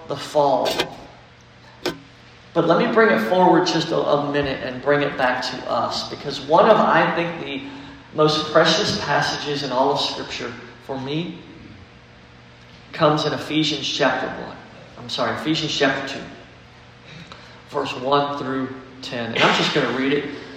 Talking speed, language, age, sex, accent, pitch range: 160 wpm, English, 40-59, male, American, 125-180 Hz